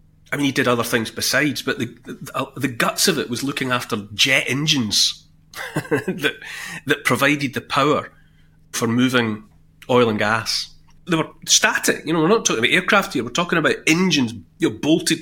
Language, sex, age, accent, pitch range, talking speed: English, male, 30-49, British, 115-155 Hz, 180 wpm